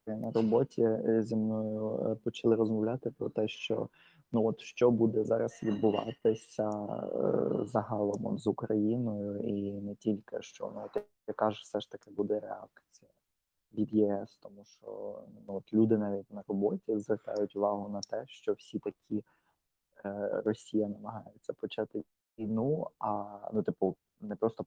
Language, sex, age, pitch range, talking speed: Ukrainian, male, 20-39, 105-115 Hz, 140 wpm